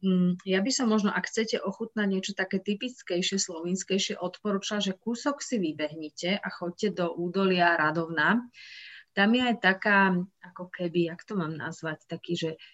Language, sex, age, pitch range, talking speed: Slovak, female, 30-49, 175-200 Hz, 155 wpm